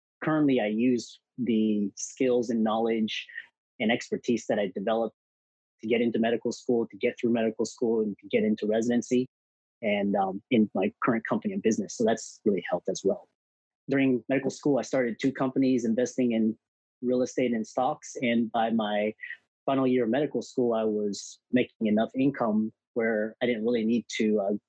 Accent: American